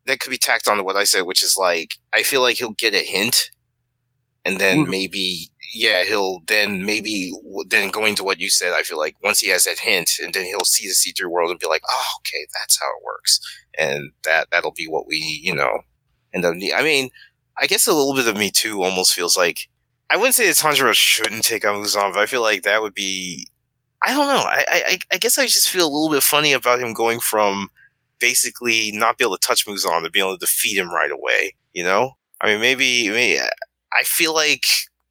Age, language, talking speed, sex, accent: 30-49, English, 235 wpm, male, American